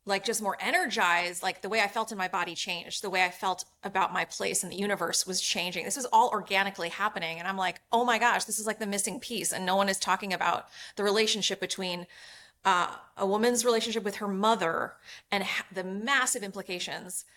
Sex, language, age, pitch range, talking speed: female, English, 30-49, 185-225 Hz, 215 wpm